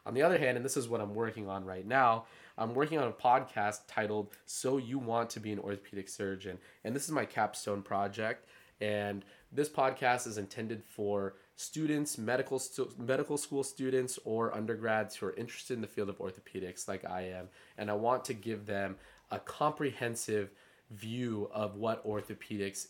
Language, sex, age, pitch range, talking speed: English, male, 20-39, 100-125 Hz, 180 wpm